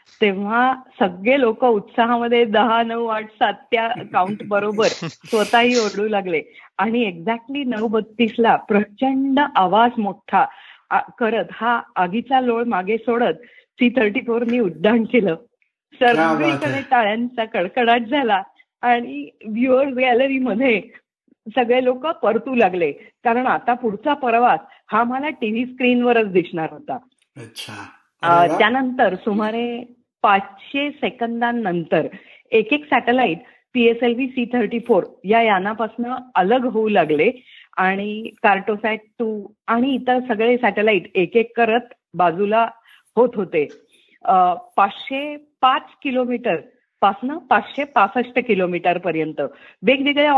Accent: native